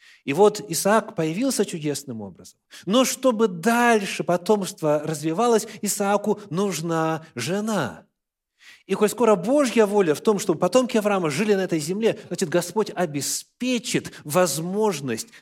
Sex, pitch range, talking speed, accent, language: male, 135-200 Hz, 125 wpm, native, Russian